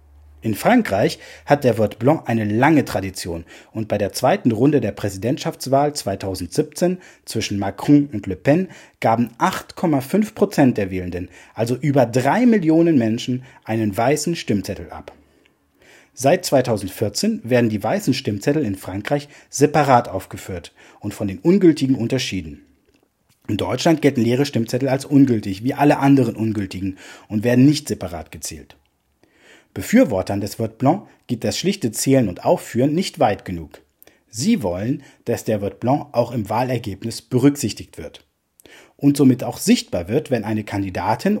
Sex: male